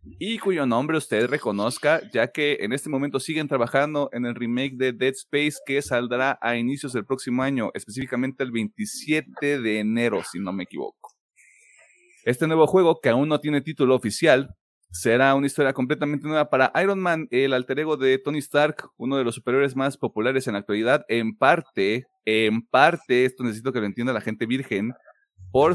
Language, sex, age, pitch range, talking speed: Spanish, male, 30-49, 115-150 Hz, 185 wpm